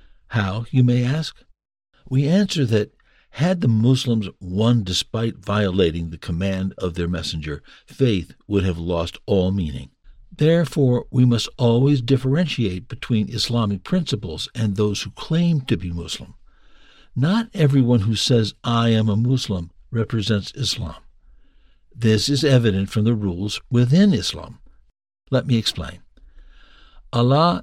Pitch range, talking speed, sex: 100-130 Hz, 135 wpm, male